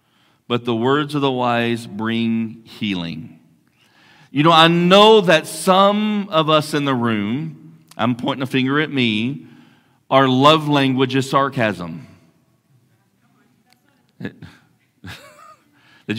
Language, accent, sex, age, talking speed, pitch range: English, American, male, 40-59, 115 wpm, 115-160 Hz